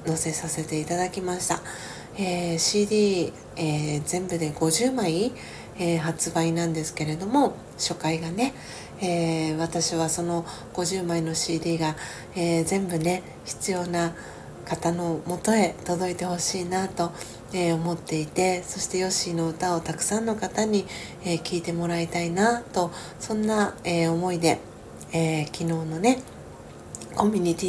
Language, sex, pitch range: Japanese, female, 165-190 Hz